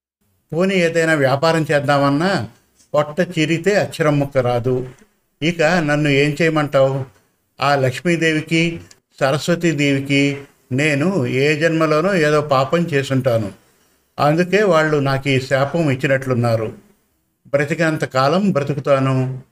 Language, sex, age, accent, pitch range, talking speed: Telugu, male, 50-69, native, 135-170 Hz, 90 wpm